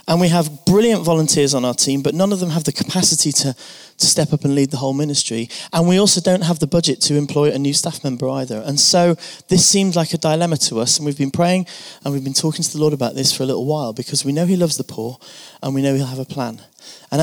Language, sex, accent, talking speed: English, male, British, 275 wpm